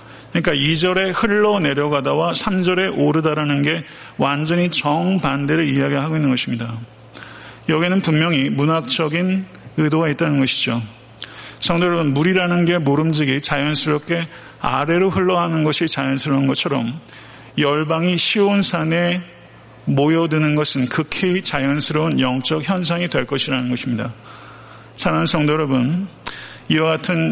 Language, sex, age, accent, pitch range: Korean, male, 40-59, native, 130-170 Hz